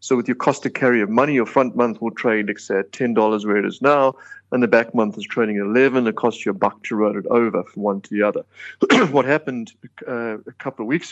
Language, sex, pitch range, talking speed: English, male, 115-145 Hz, 265 wpm